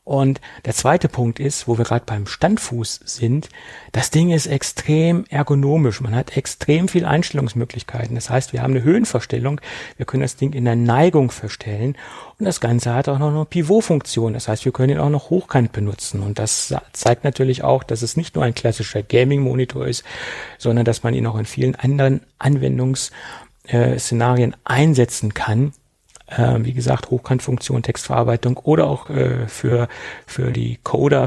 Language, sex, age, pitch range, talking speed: German, male, 40-59, 115-135 Hz, 165 wpm